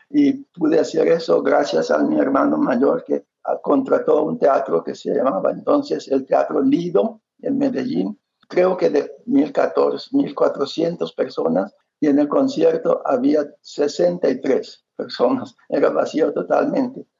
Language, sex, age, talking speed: Spanish, male, 60-79, 135 wpm